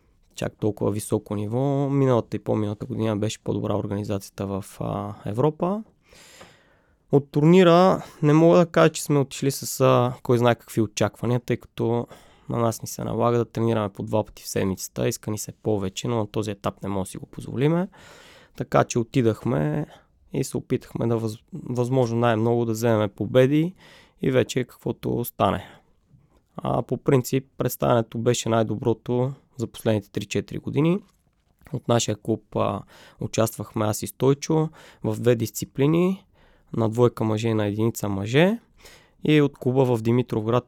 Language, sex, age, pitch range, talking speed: Bulgarian, male, 20-39, 110-135 Hz, 155 wpm